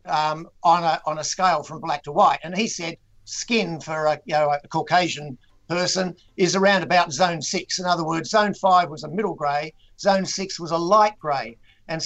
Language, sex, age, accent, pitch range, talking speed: English, male, 50-69, Australian, 160-195 Hz, 200 wpm